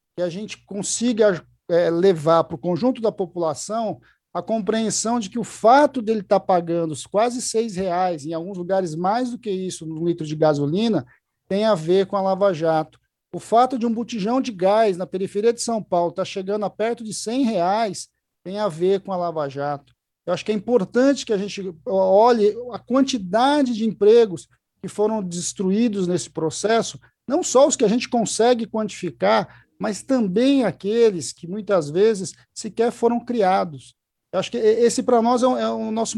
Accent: Brazilian